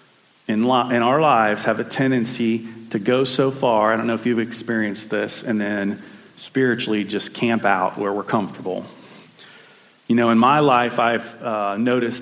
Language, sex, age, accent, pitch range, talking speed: English, male, 40-59, American, 105-120 Hz, 170 wpm